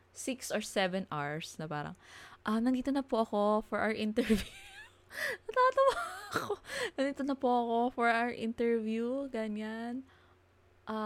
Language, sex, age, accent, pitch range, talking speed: Filipino, female, 20-39, native, 170-255 Hz, 140 wpm